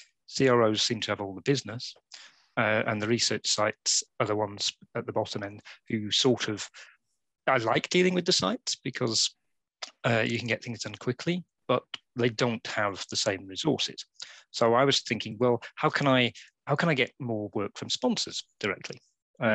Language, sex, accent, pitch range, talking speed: English, male, British, 105-120 Hz, 185 wpm